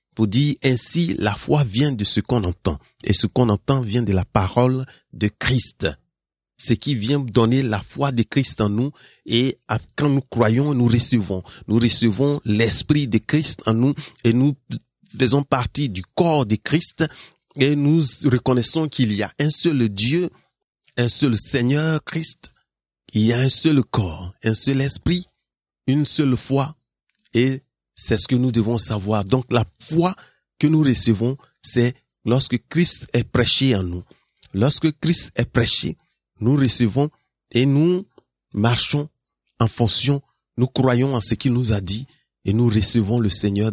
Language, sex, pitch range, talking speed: French, male, 105-135 Hz, 165 wpm